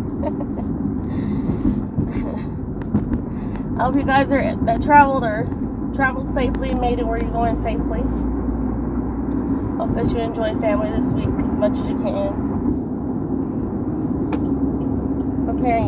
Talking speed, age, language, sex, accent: 110 wpm, 30-49, English, female, American